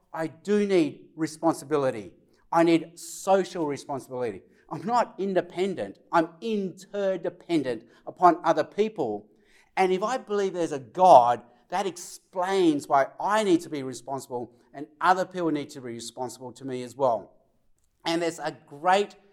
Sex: male